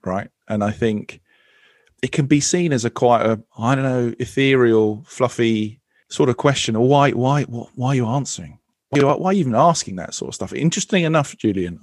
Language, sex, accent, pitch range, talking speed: English, male, British, 105-130 Hz, 210 wpm